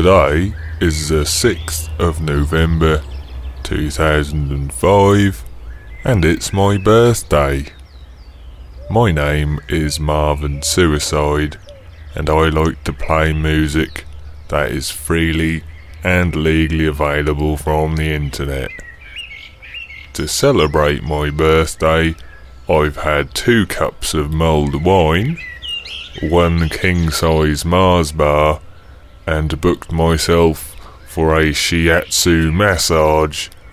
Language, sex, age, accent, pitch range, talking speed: English, female, 20-39, British, 75-85 Hz, 95 wpm